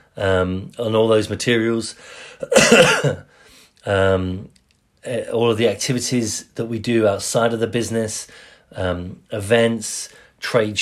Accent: British